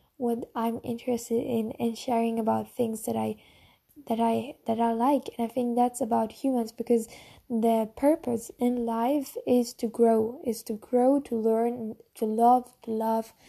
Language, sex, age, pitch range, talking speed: English, female, 10-29, 220-245 Hz, 170 wpm